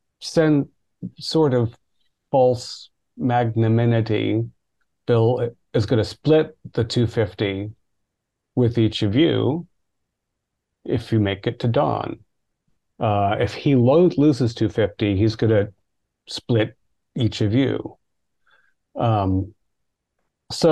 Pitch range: 105-125 Hz